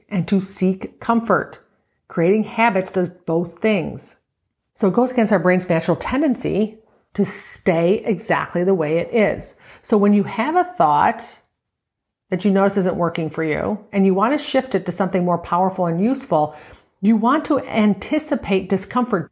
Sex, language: female, English